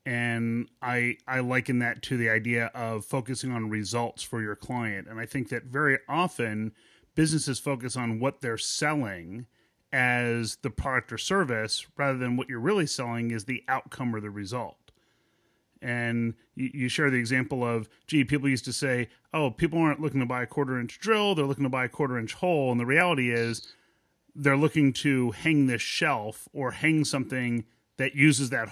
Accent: American